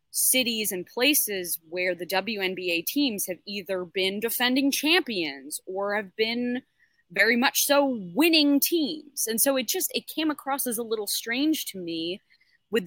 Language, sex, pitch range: English, female, 185-250 Hz